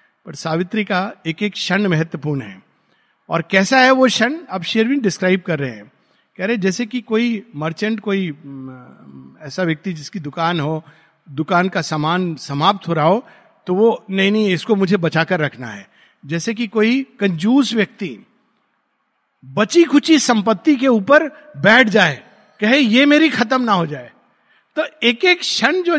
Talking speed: 165 wpm